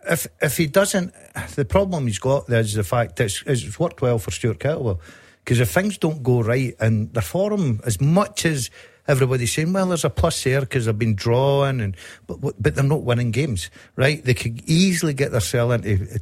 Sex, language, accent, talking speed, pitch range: male, English, British, 215 wpm, 115-140 Hz